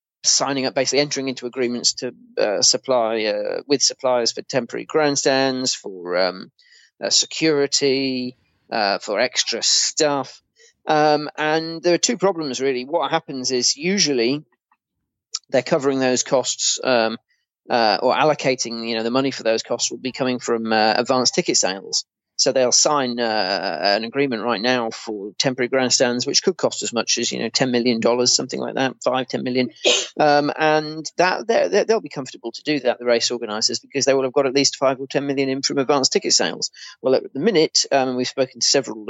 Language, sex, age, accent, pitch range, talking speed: English, male, 30-49, British, 125-145 Hz, 185 wpm